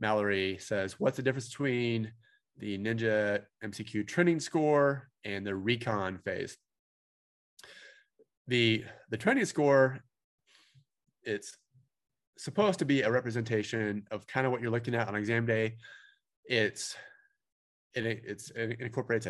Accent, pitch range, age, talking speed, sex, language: American, 105-135 Hz, 30-49, 125 wpm, male, English